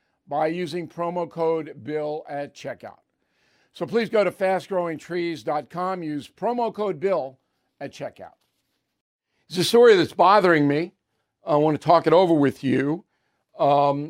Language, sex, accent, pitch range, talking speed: English, male, American, 145-175 Hz, 135 wpm